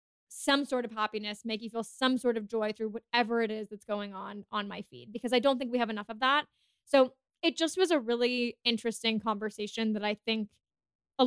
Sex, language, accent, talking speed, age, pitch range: female, English, American, 225 wpm, 20-39, 215-245 Hz